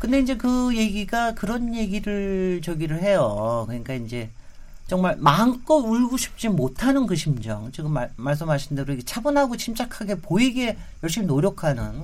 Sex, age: male, 40-59